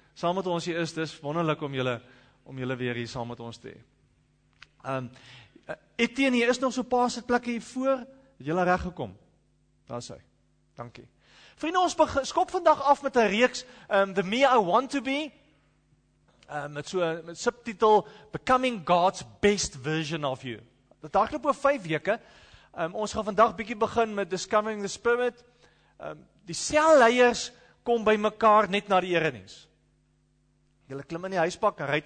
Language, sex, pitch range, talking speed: English, male, 160-235 Hz, 180 wpm